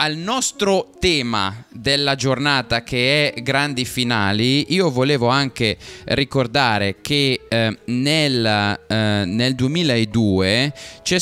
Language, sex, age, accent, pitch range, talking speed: Italian, male, 20-39, native, 115-165 Hz, 100 wpm